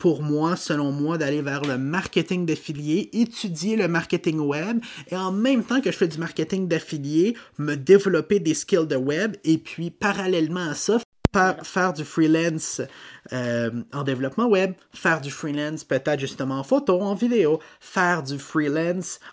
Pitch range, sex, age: 145-185 Hz, male, 30-49